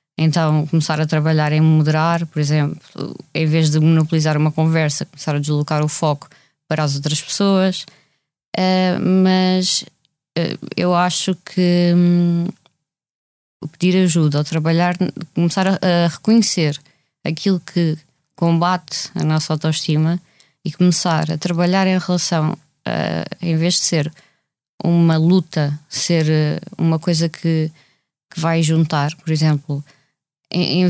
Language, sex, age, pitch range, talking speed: Portuguese, female, 20-39, 155-180 Hz, 120 wpm